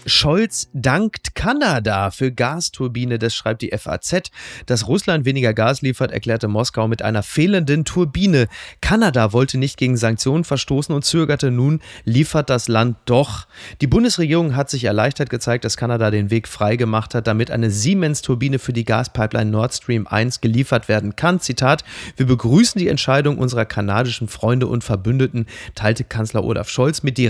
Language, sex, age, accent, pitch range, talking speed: German, male, 30-49, German, 115-155 Hz, 160 wpm